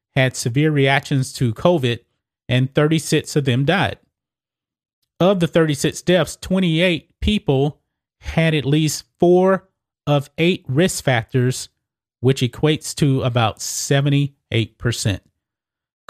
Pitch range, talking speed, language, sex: 130-160 Hz, 110 wpm, English, male